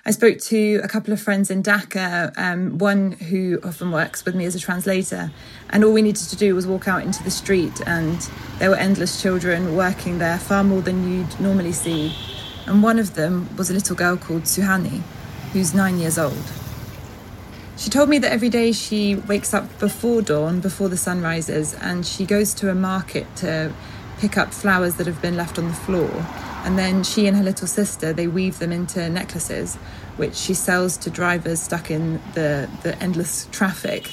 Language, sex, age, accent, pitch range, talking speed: English, female, 20-39, British, 165-195 Hz, 200 wpm